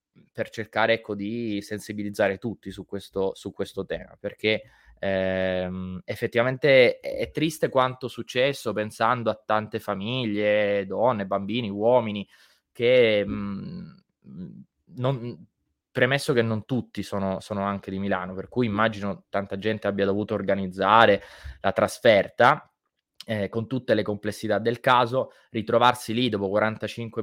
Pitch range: 100-125 Hz